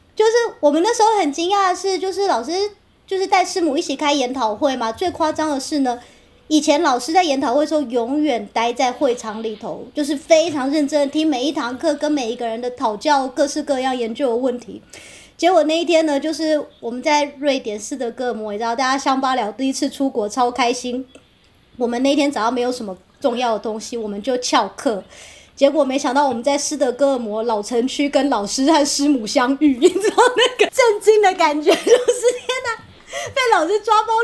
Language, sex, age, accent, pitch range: Chinese, male, 30-49, American, 250-370 Hz